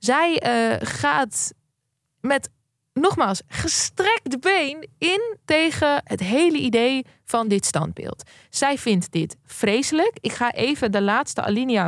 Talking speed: 125 wpm